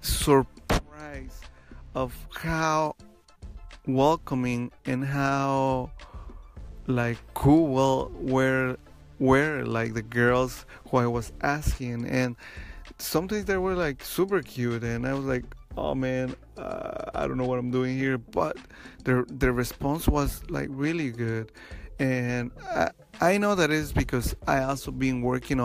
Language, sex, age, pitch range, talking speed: English, male, 30-49, 120-145 Hz, 135 wpm